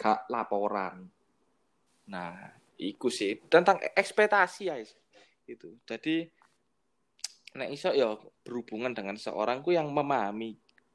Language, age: Indonesian, 20-39